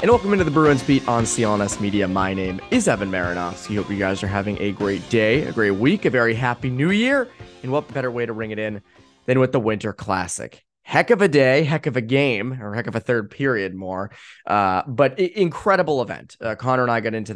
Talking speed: 235 wpm